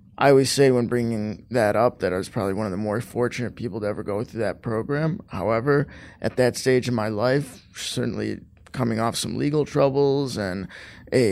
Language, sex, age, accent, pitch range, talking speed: English, male, 20-39, American, 110-135 Hz, 200 wpm